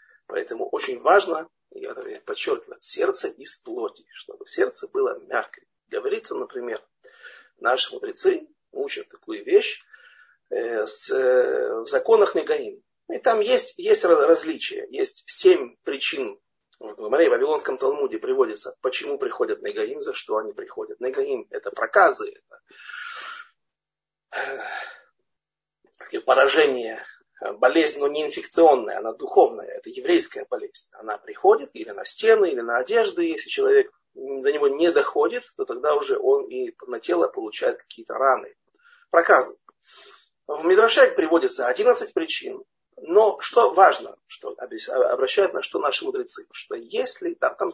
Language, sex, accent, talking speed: Russian, male, native, 135 wpm